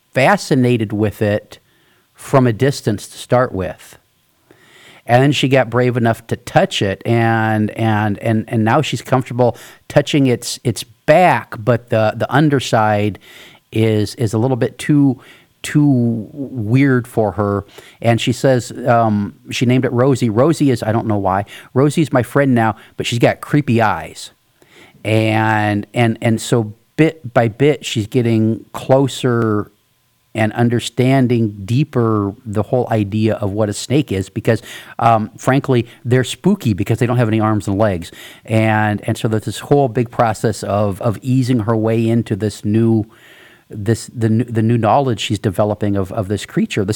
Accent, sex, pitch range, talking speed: American, male, 110-130 Hz, 165 wpm